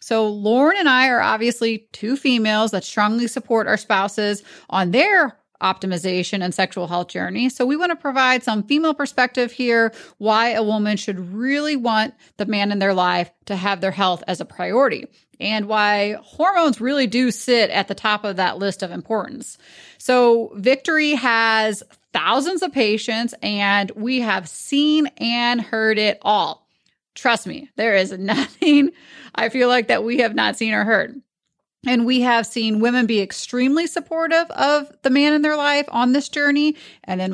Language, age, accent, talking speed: English, 30-49, American, 175 wpm